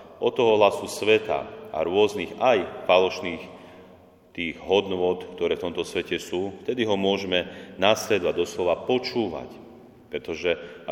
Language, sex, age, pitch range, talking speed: Slovak, male, 40-59, 85-95 Hz, 125 wpm